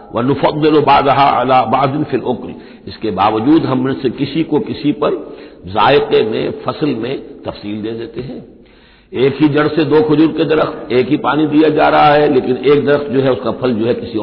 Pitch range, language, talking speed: 125-185 Hz, Hindi, 205 wpm